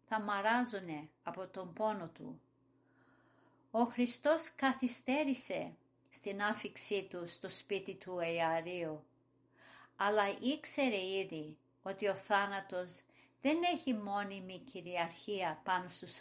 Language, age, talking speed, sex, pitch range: Greek, 50-69, 105 wpm, female, 180-225 Hz